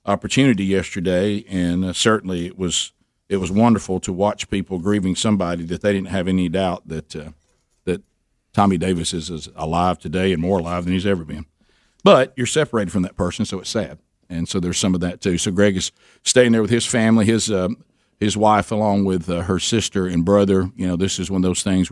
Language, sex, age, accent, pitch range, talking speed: English, male, 50-69, American, 90-100 Hz, 220 wpm